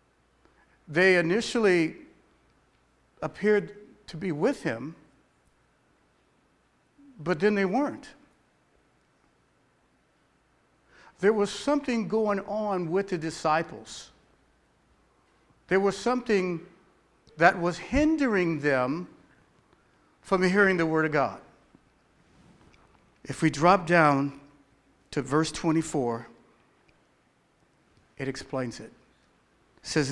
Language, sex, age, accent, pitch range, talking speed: English, male, 60-79, American, 140-185 Hz, 85 wpm